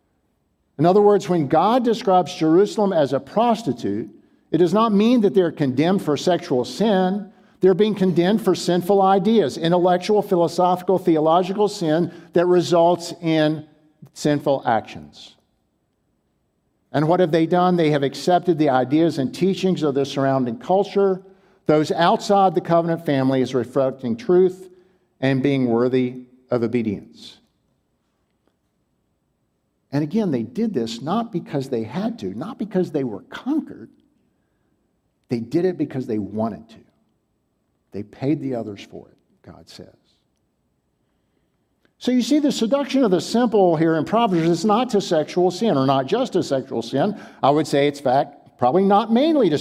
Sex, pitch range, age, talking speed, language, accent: male, 135-190 Hz, 50-69, 150 wpm, English, American